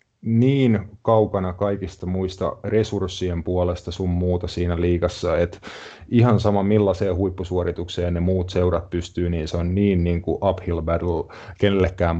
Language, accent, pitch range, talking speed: Finnish, native, 85-105 Hz, 140 wpm